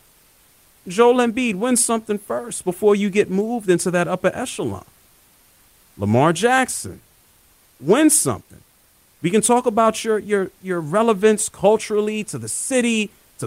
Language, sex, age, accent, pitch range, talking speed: English, male, 40-59, American, 130-215 Hz, 135 wpm